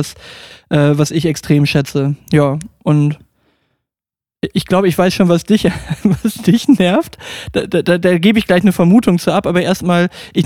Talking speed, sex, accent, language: 170 wpm, male, German, German